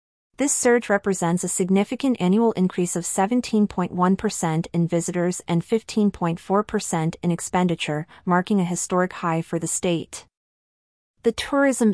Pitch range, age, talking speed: 170-210 Hz, 30-49, 120 wpm